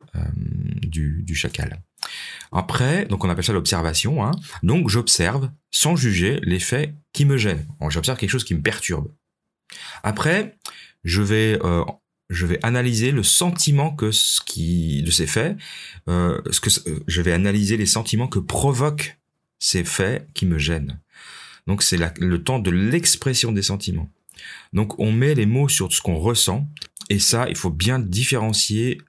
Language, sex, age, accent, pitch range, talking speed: French, male, 30-49, French, 90-130 Hz, 165 wpm